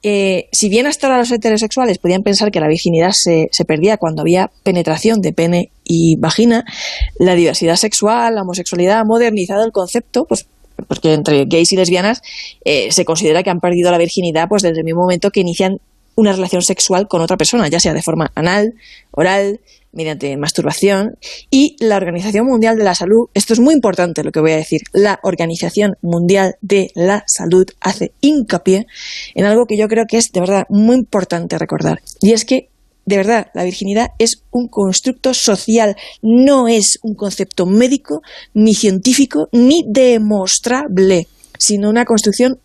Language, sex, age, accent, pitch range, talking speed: Spanish, female, 20-39, Spanish, 185-230 Hz, 175 wpm